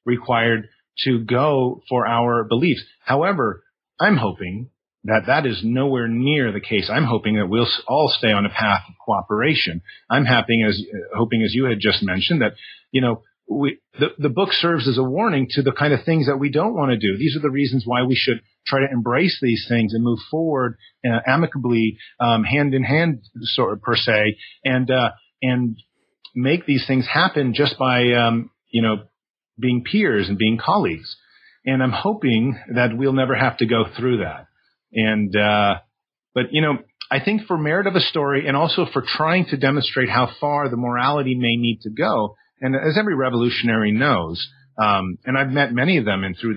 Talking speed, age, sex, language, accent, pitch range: 195 wpm, 40-59, male, English, American, 110-140 Hz